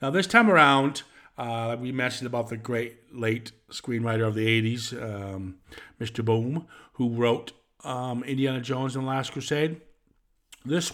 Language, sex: English, male